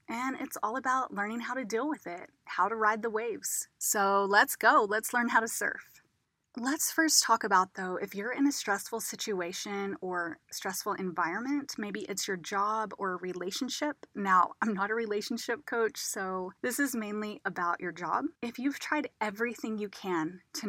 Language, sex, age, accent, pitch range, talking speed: English, female, 30-49, American, 195-245 Hz, 185 wpm